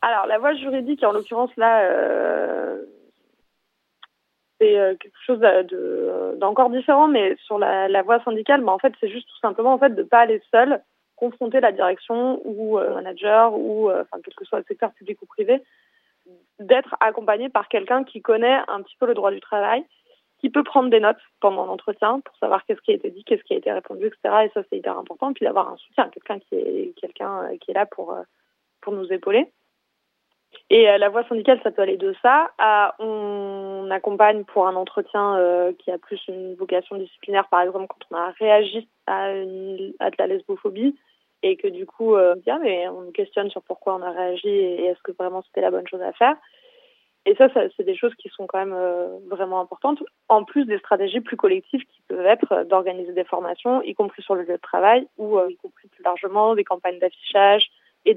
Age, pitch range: 20-39, 195-290 Hz